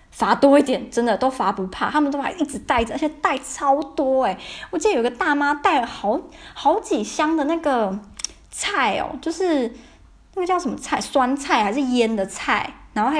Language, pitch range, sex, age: Chinese, 200-265 Hz, female, 20-39